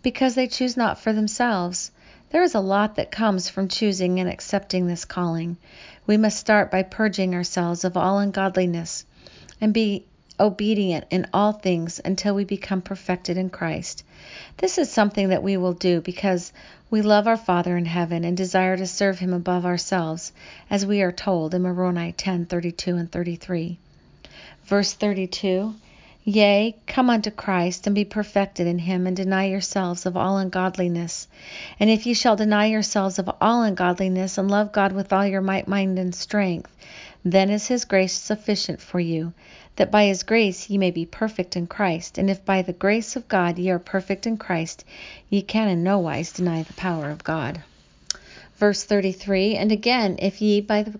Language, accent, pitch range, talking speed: English, American, 180-210 Hz, 180 wpm